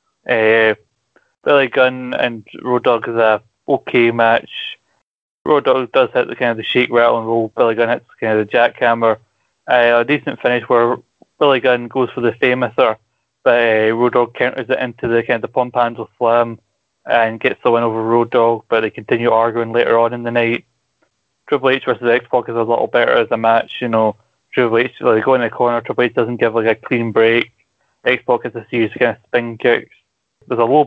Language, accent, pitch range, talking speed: English, British, 115-125 Hz, 220 wpm